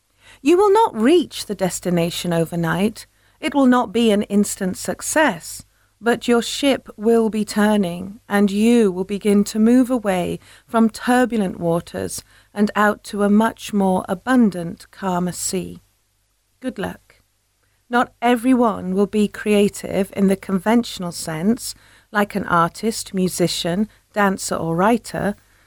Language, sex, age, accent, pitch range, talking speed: English, female, 40-59, British, 180-235 Hz, 135 wpm